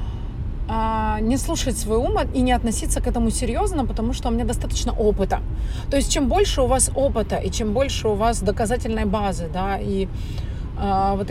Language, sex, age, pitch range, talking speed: Russian, female, 30-49, 85-105 Hz, 175 wpm